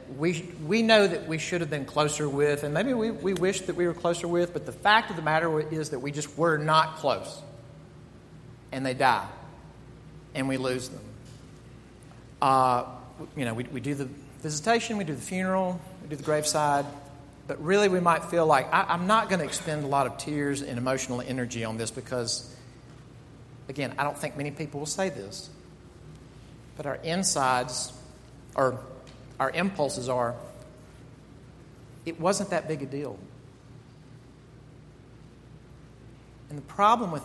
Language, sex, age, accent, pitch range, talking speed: English, male, 40-59, American, 130-165 Hz, 170 wpm